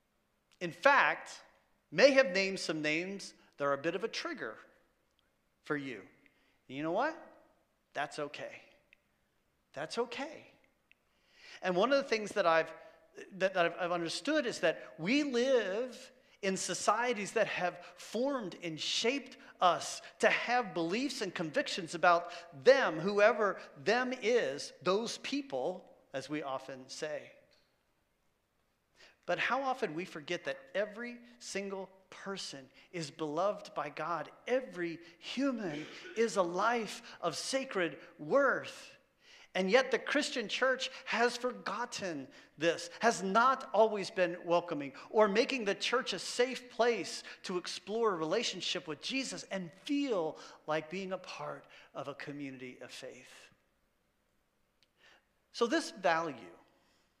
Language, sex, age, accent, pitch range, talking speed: English, male, 40-59, American, 170-245 Hz, 130 wpm